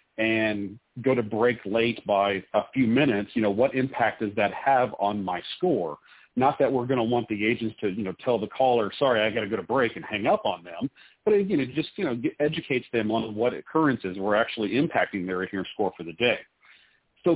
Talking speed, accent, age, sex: 235 wpm, American, 40-59, male